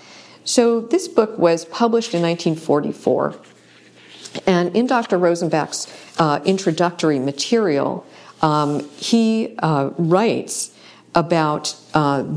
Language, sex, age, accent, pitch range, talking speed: English, female, 50-69, American, 140-180 Hz, 95 wpm